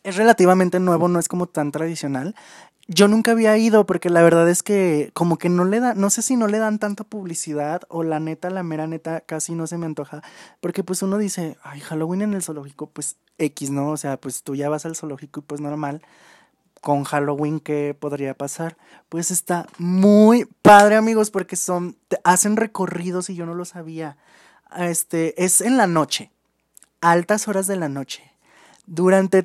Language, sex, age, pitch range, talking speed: Spanish, male, 20-39, 150-185 Hz, 195 wpm